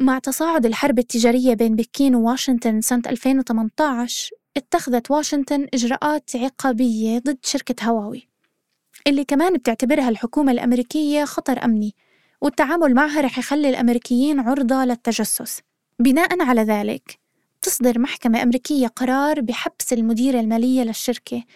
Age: 20-39